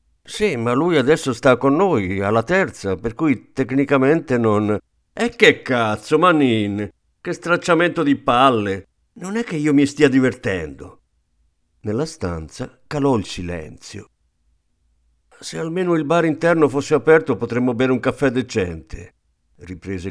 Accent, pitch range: native, 90-140 Hz